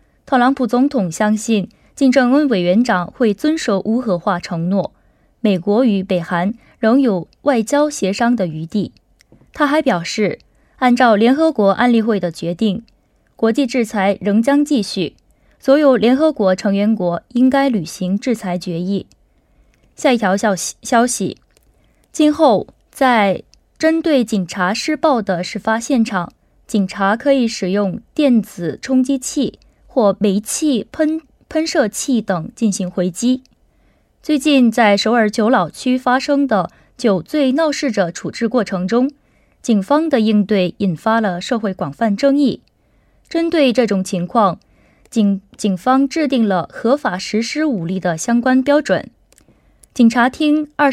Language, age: Korean, 20-39